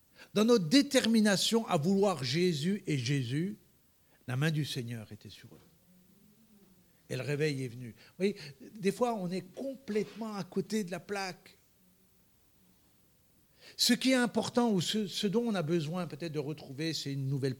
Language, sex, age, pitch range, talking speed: French, male, 60-79, 135-185 Hz, 165 wpm